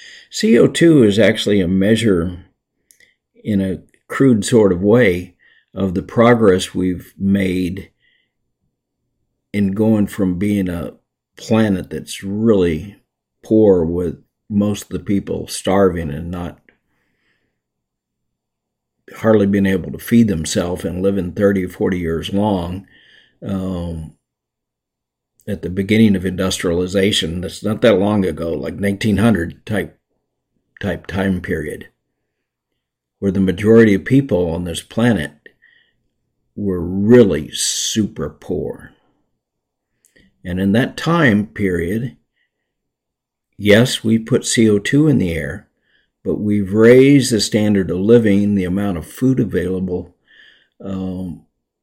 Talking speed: 115 wpm